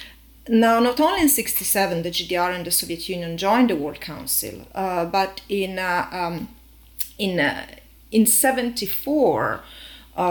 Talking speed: 130 wpm